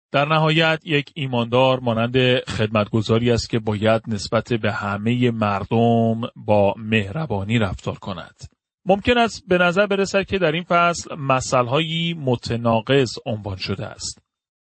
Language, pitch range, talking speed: Persian, 125-180 Hz, 125 wpm